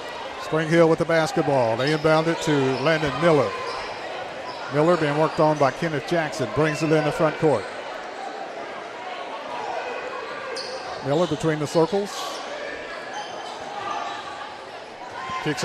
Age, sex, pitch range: 50-69, male, 155-185 Hz